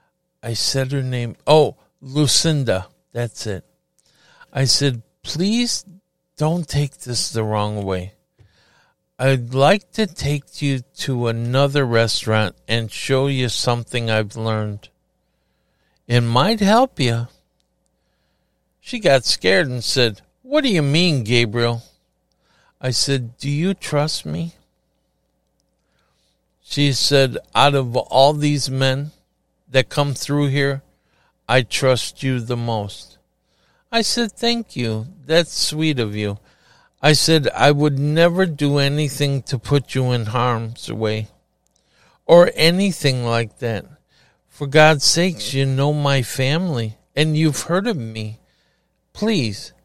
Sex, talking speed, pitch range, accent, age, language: male, 125 wpm, 115-155 Hz, American, 60-79, English